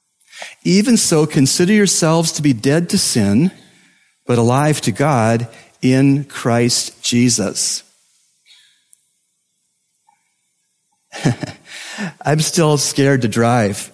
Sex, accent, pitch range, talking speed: male, American, 125-155 Hz, 90 wpm